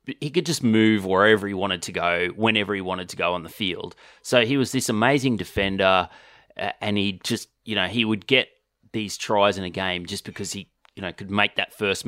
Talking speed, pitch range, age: 225 wpm, 95-115 Hz, 30-49